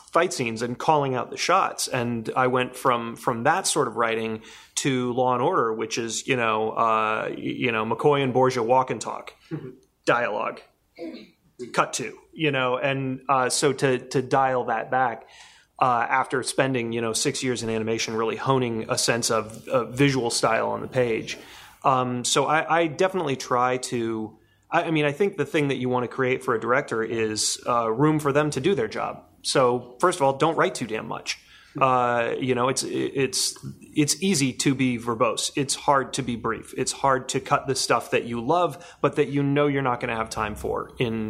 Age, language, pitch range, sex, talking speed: 30-49, English, 115-135 Hz, male, 205 wpm